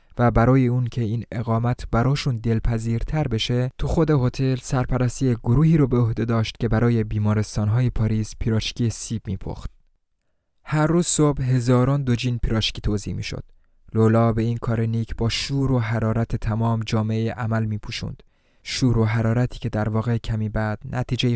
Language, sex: Persian, male